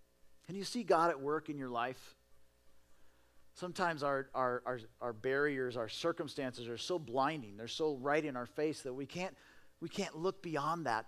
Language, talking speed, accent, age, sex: English, 185 wpm, American, 40-59, male